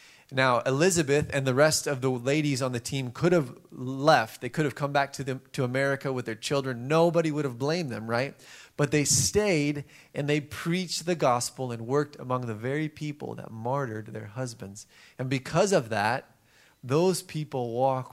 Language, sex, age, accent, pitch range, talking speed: English, male, 30-49, American, 120-150 Hz, 190 wpm